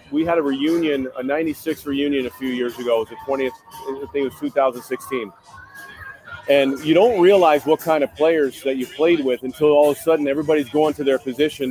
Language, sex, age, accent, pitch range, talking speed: English, male, 40-59, American, 140-165 Hz, 215 wpm